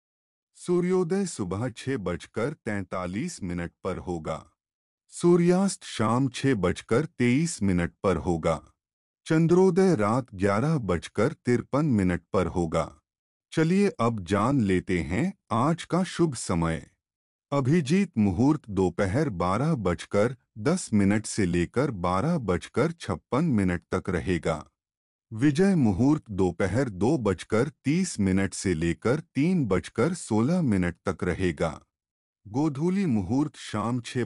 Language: Hindi